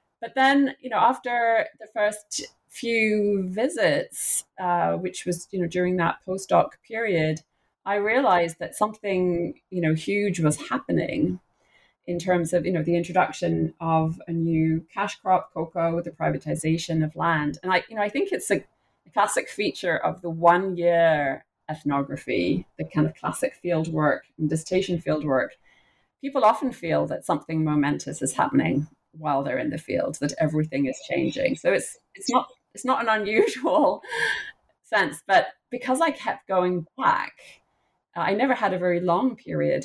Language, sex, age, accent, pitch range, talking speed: English, female, 30-49, British, 160-210 Hz, 160 wpm